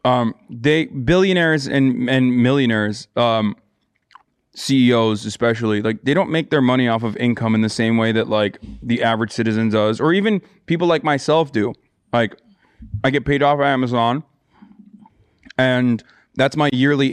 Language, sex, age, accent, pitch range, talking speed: English, male, 20-39, American, 115-150 Hz, 155 wpm